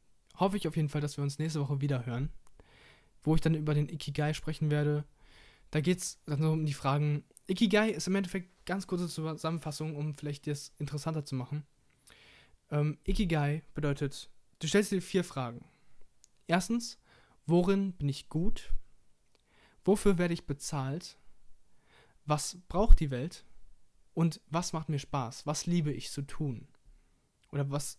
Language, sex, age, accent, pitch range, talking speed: German, male, 20-39, German, 140-170 Hz, 155 wpm